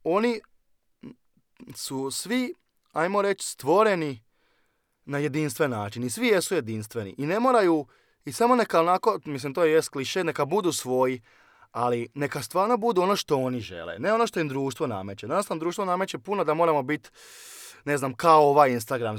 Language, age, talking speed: Croatian, 20-39, 170 wpm